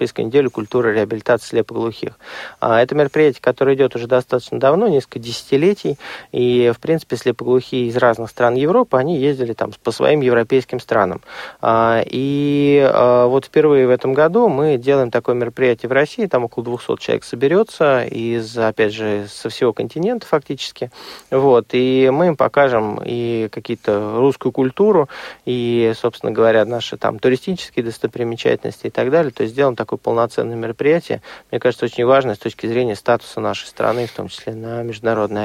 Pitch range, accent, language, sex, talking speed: 115-140 Hz, native, Russian, male, 155 wpm